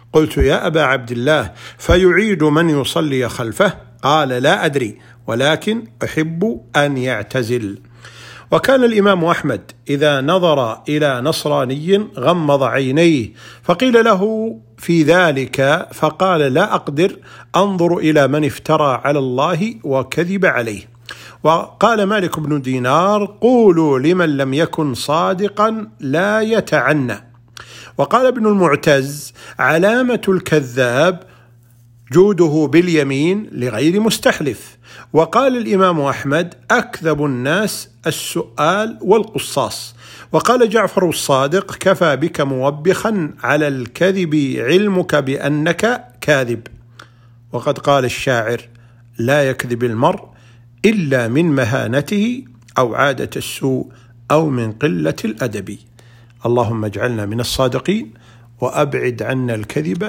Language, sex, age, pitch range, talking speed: Arabic, male, 50-69, 120-175 Hz, 100 wpm